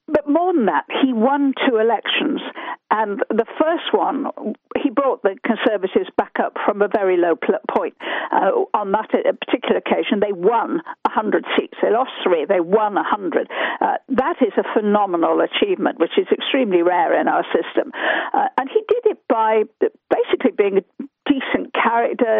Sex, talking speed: female, 160 wpm